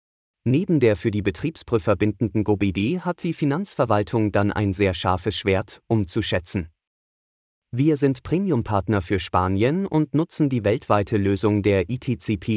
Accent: German